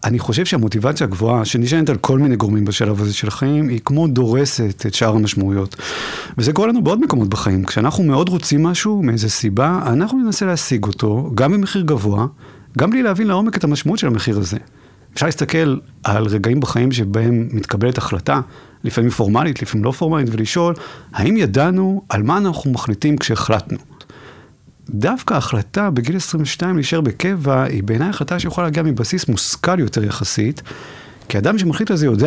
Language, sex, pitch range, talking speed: Hebrew, male, 110-155 Hz, 165 wpm